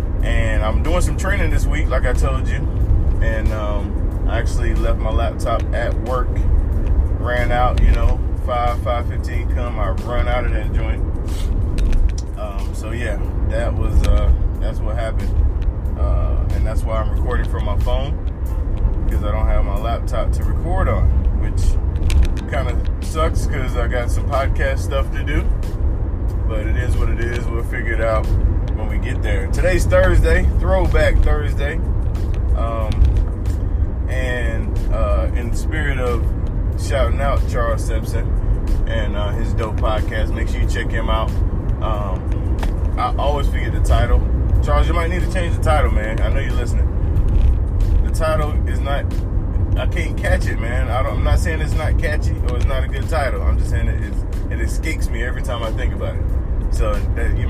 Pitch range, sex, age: 80-95 Hz, male, 20-39